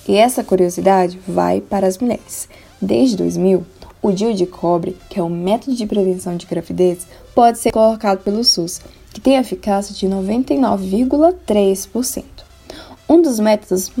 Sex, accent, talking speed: female, Brazilian, 145 wpm